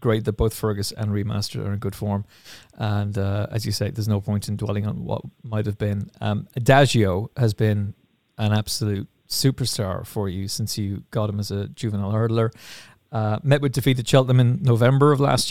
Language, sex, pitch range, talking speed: English, male, 110-130 Hz, 200 wpm